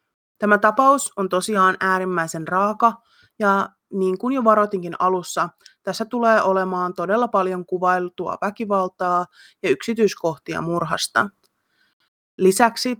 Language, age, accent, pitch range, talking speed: Finnish, 30-49, native, 180-220 Hz, 105 wpm